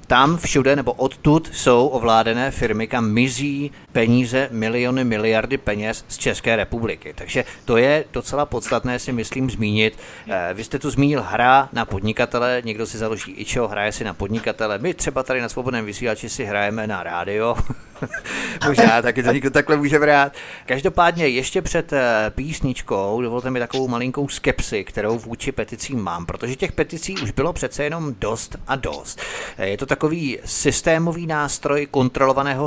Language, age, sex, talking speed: Czech, 30-49, male, 160 wpm